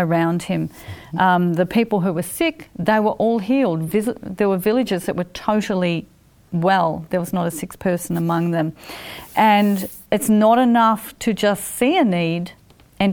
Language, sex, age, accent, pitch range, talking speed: English, female, 40-59, Australian, 180-240 Hz, 175 wpm